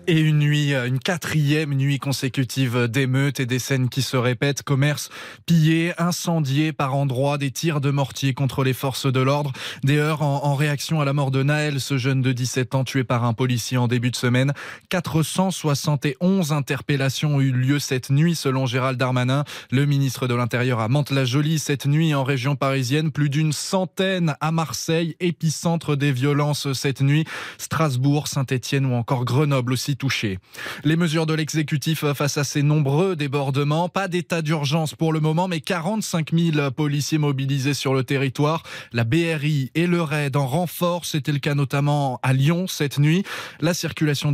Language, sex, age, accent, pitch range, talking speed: French, male, 20-39, French, 135-160 Hz, 175 wpm